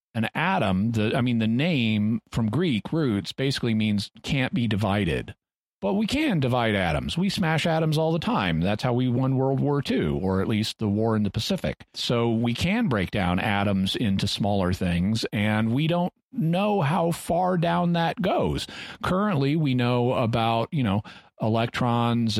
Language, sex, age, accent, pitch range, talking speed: English, male, 40-59, American, 105-130 Hz, 175 wpm